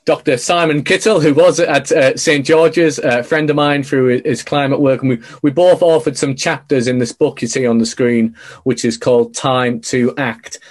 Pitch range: 125-160 Hz